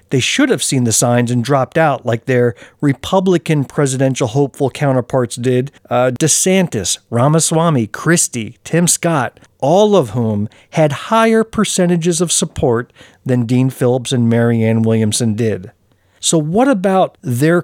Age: 50-69